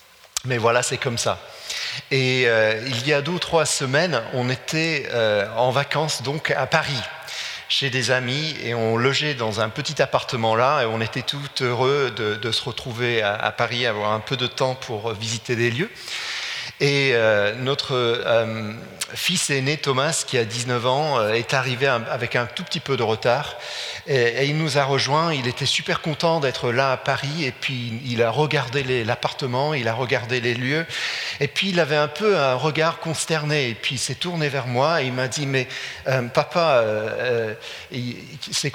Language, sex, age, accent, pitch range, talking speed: French, male, 40-59, French, 125-160 Hz, 195 wpm